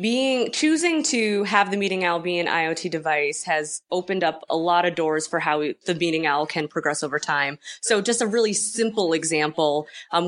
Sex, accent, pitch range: female, American, 155-200 Hz